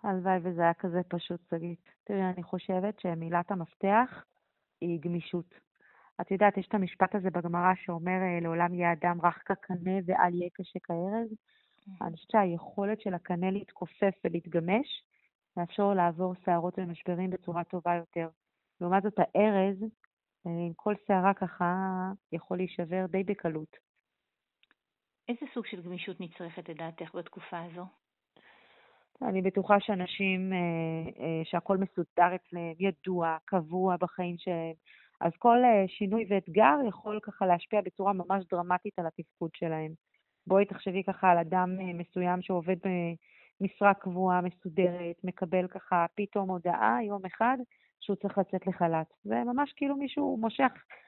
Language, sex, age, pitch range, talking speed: Hebrew, female, 30-49, 175-200 Hz, 130 wpm